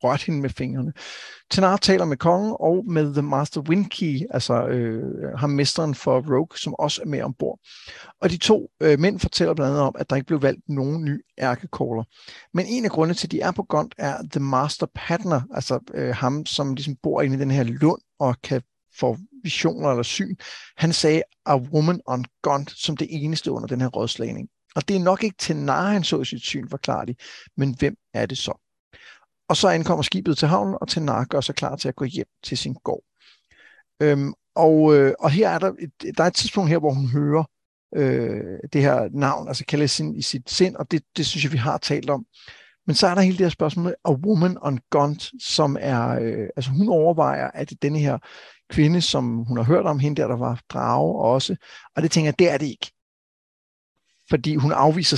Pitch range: 135-170 Hz